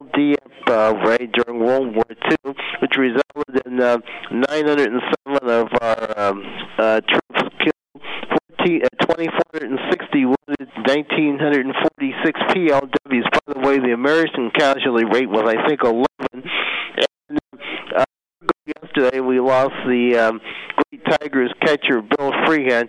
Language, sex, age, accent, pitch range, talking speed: English, male, 50-69, American, 120-145 Hz, 120 wpm